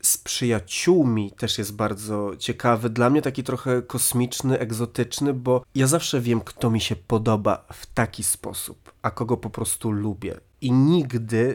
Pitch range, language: 115-135 Hz, Polish